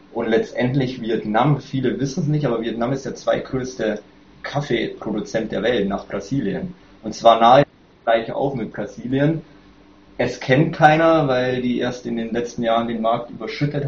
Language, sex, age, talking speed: German, male, 20-39, 165 wpm